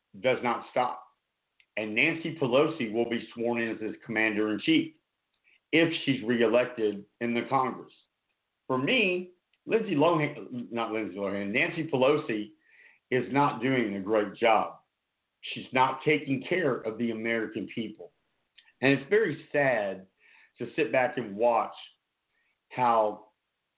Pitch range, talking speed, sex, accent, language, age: 110-145 Hz, 135 wpm, male, American, English, 50-69